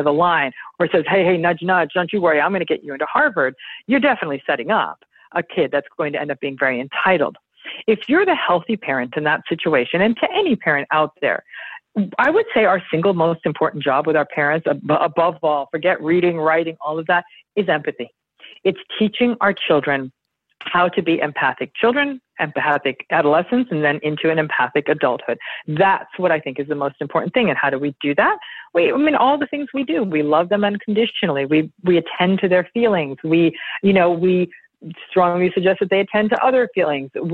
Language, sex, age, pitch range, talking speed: English, female, 50-69, 160-220 Hz, 205 wpm